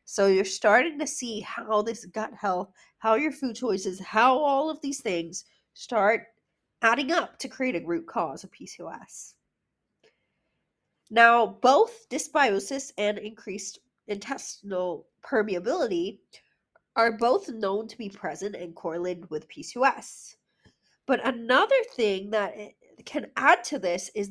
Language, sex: English, female